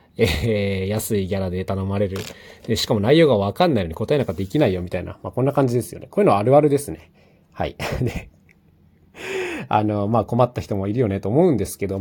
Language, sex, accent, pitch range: Japanese, male, native, 100-155 Hz